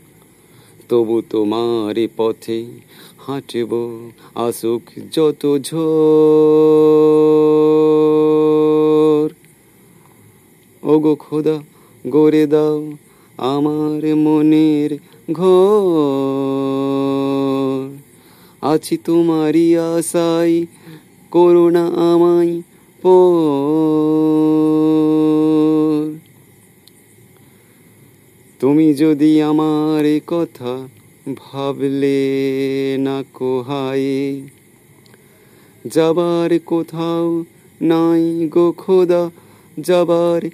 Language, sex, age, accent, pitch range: Bengali, male, 30-49, native, 140-165 Hz